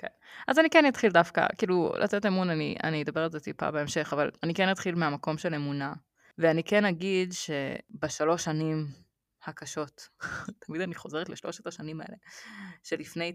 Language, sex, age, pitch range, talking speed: Hebrew, female, 20-39, 145-195 Hz, 160 wpm